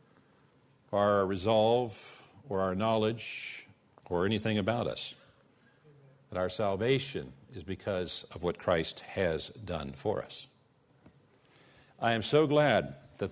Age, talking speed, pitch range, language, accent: 50-69, 115 wpm, 105-135 Hz, English, American